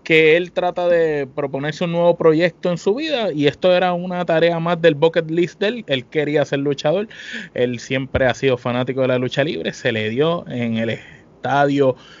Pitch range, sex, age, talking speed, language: 130-170 Hz, male, 20-39, 200 wpm, Spanish